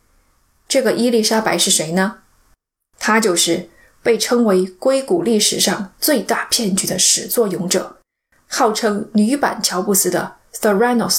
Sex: female